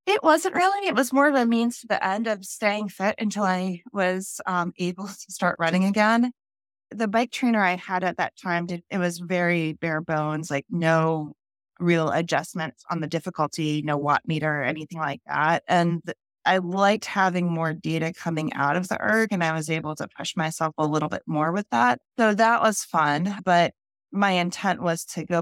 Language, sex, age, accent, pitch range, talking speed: English, female, 20-39, American, 160-195 Hz, 205 wpm